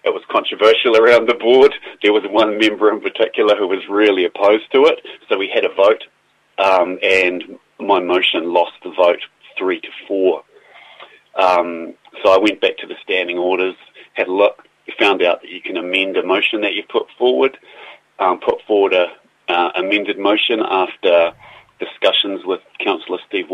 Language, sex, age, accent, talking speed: English, male, 30-49, Australian, 175 wpm